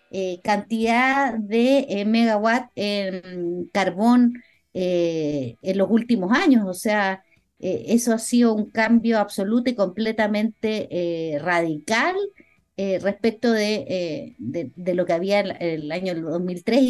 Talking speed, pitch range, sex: 140 wpm, 190-245 Hz, female